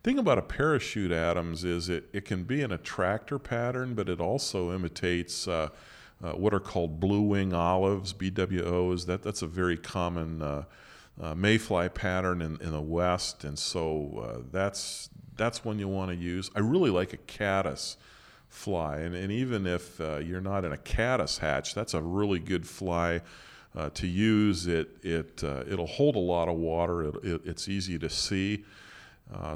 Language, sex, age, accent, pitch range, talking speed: English, male, 40-59, American, 85-100 Hz, 185 wpm